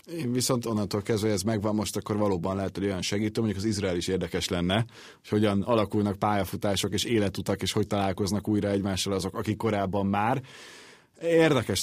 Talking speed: 185 wpm